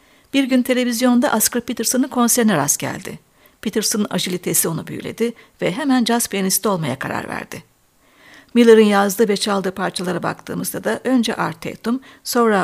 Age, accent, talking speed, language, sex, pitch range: 60-79, native, 140 wpm, Turkish, female, 195-245 Hz